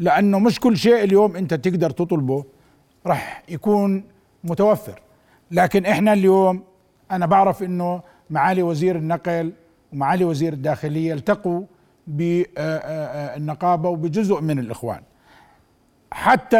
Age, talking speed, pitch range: 50-69, 105 wpm, 160-210 Hz